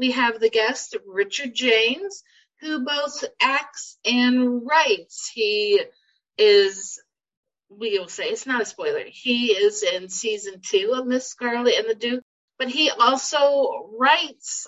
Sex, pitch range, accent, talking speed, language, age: female, 190-285 Hz, American, 145 wpm, English, 50-69